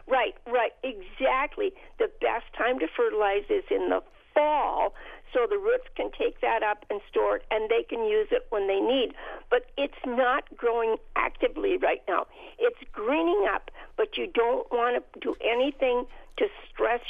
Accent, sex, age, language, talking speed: American, female, 50-69, English, 170 wpm